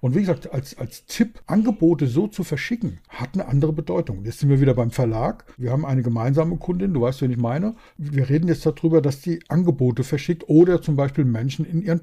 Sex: male